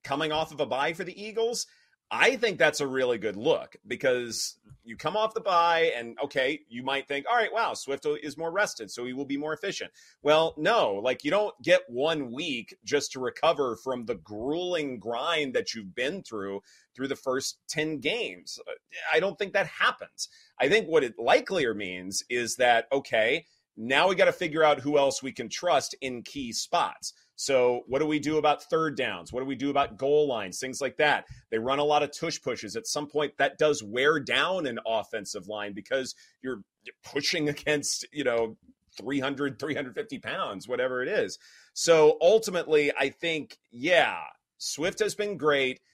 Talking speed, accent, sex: 190 wpm, American, male